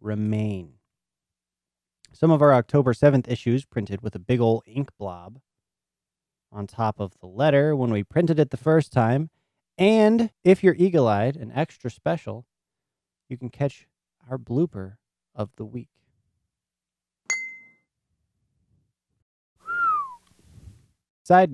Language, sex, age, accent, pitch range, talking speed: English, male, 30-49, American, 110-155 Hz, 115 wpm